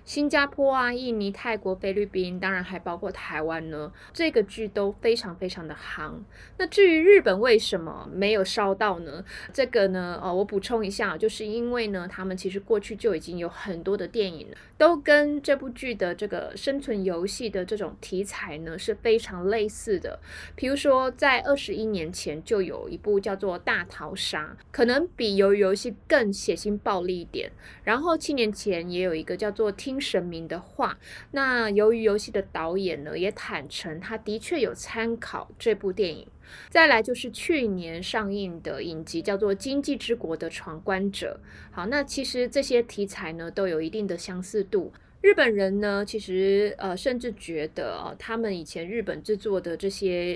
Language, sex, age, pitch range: Chinese, female, 20-39, 185-245 Hz